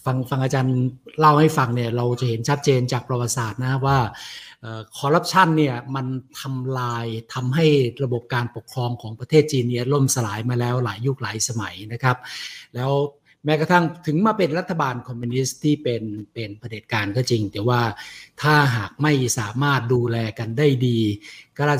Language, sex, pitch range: Thai, male, 120-145 Hz